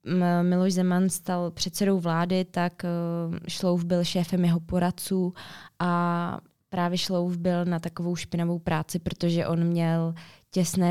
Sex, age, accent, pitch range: female, 20-39, native, 170-190 Hz